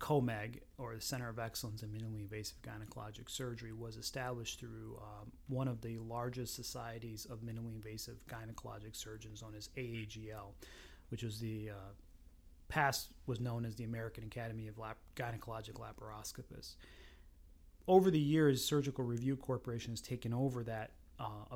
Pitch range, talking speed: 110-130 Hz, 150 wpm